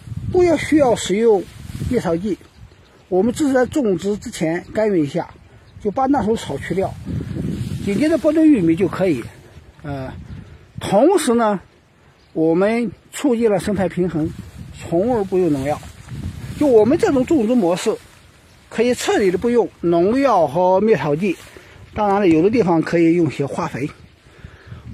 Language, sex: Chinese, male